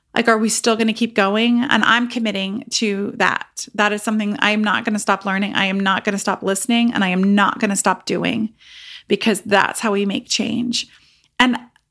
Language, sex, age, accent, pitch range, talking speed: English, female, 30-49, American, 205-235 Hz, 220 wpm